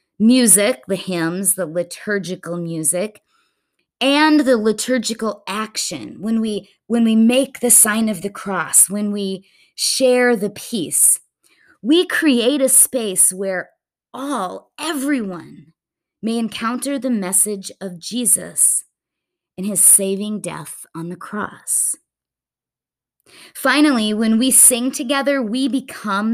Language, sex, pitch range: English, female, 195-265 Hz